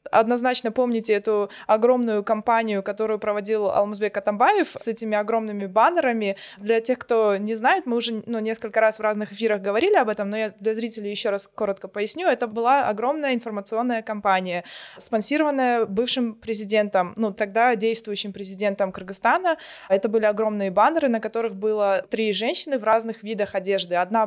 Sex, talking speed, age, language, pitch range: female, 160 wpm, 20-39, Russian, 215-255 Hz